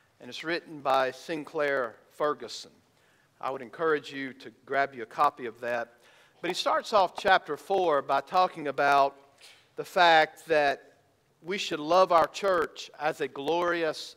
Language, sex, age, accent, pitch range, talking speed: English, male, 50-69, American, 140-175 Hz, 155 wpm